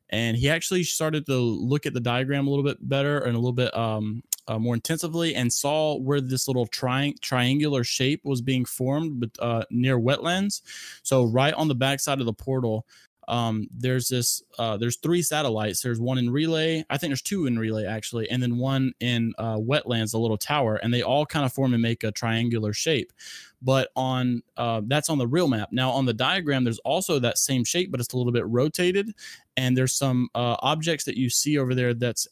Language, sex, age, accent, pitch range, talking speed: English, male, 20-39, American, 120-140 Hz, 210 wpm